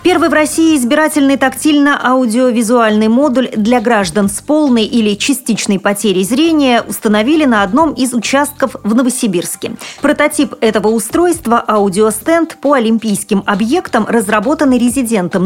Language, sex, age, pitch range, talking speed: Russian, female, 30-49, 195-255 Hz, 120 wpm